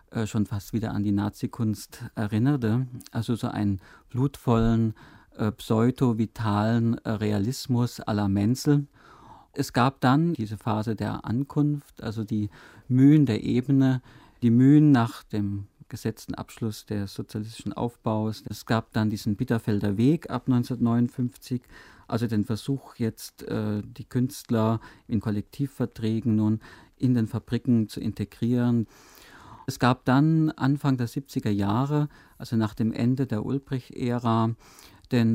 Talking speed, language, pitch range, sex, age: 130 wpm, German, 110-130 Hz, male, 50-69